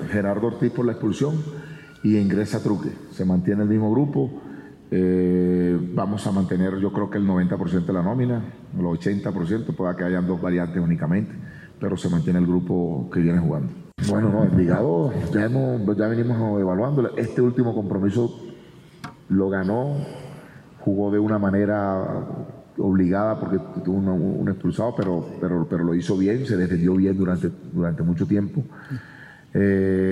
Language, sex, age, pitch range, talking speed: Spanish, male, 40-59, 90-105 Hz, 155 wpm